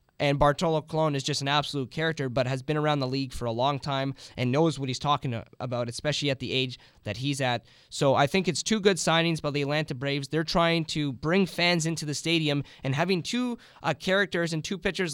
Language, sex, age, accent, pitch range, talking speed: English, male, 20-39, American, 130-155 Hz, 230 wpm